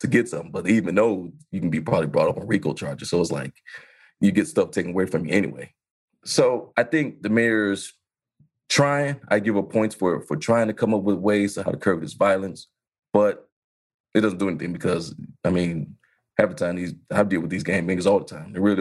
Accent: American